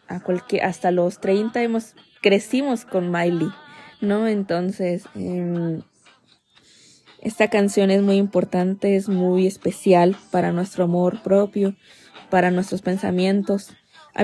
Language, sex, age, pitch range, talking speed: Spanish, female, 20-39, 190-225 Hz, 110 wpm